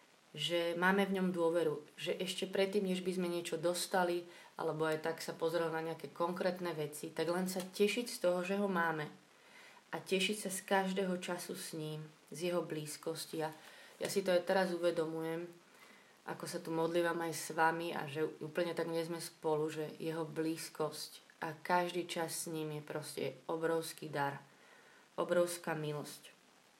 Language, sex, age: Slovak, female, 30-49